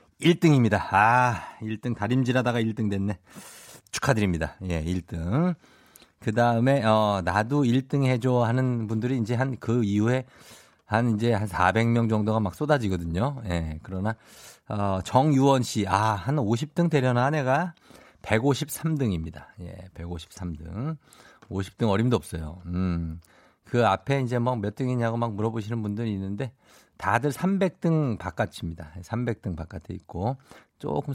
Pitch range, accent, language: 100-135 Hz, native, Korean